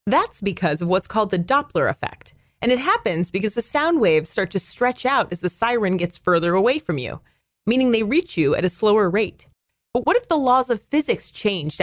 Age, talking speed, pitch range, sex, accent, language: 30-49, 220 wpm, 175-250 Hz, female, American, English